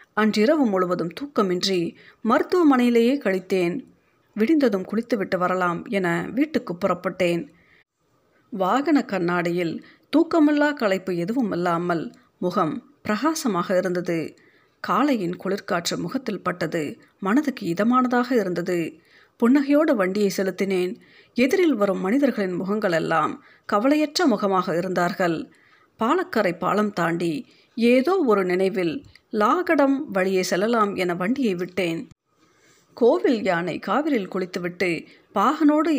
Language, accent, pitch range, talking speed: Tamil, native, 180-265 Hz, 90 wpm